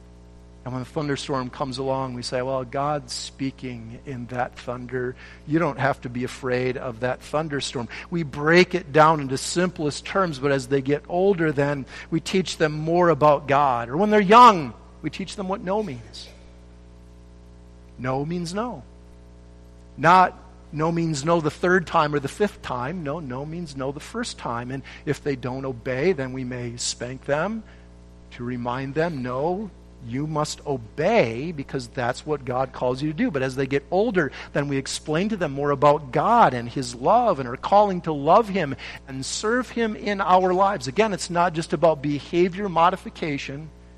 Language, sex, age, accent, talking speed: English, male, 50-69, American, 180 wpm